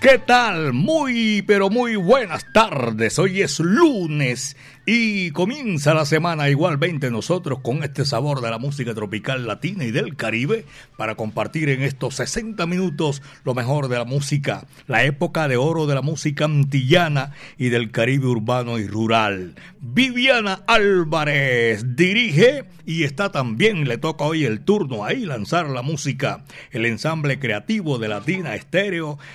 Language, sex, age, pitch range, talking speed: Spanish, male, 60-79, 130-175 Hz, 150 wpm